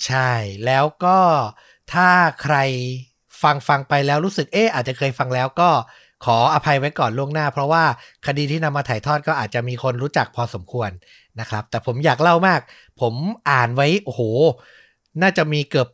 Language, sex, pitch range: Thai, male, 120-155 Hz